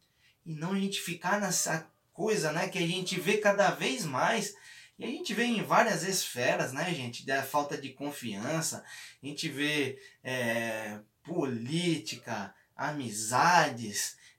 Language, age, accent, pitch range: Portuguese, 20-39, Brazilian, 125-170 Hz